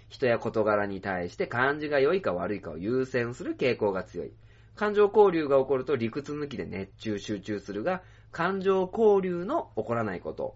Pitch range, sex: 105-135 Hz, male